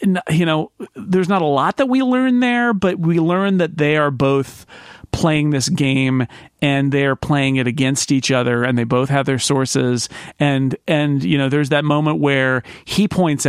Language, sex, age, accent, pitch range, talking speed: English, male, 40-59, American, 130-170 Hz, 195 wpm